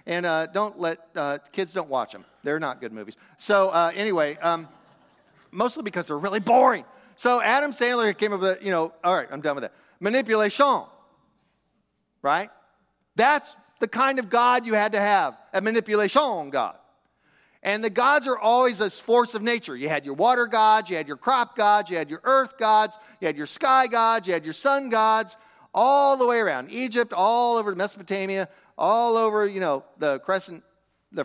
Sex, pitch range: male, 155-225 Hz